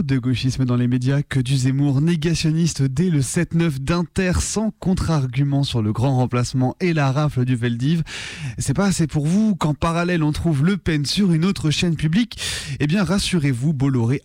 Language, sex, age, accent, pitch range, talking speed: French, male, 20-39, French, 135-180 Hz, 185 wpm